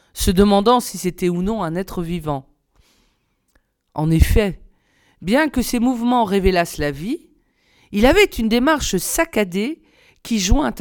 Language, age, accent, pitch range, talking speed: French, 40-59, French, 170-225 Hz, 140 wpm